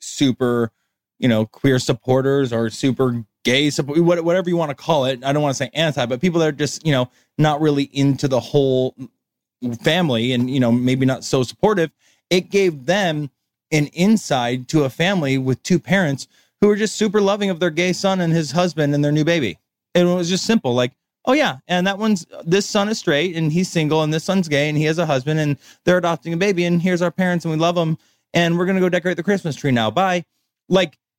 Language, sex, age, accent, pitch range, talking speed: English, male, 20-39, American, 130-180 Hz, 230 wpm